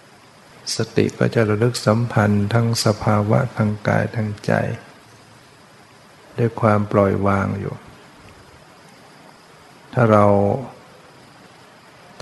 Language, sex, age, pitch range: Thai, male, 60-79, 105-120 Hz